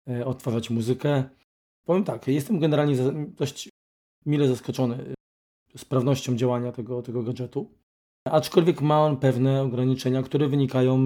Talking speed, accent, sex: 115 wpm, native, male